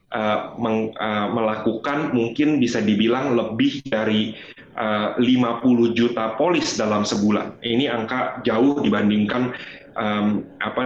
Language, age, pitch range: Indonesian, 30-49, 105-120 Hz